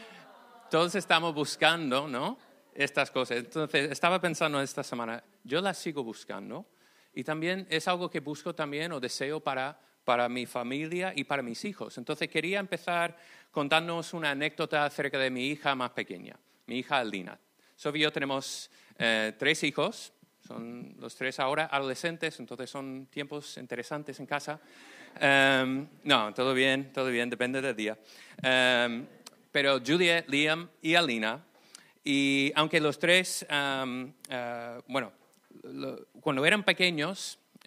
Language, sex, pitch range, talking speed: Spanish, male, 125-160 Hz, 145 wpm